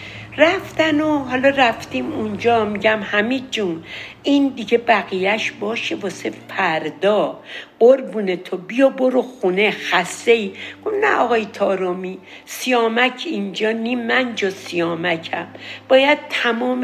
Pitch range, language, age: 195-265 Hz, Persian, 60-79